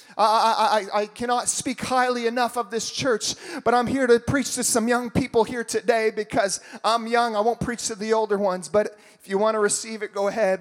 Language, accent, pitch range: English, American, 205-245 Hz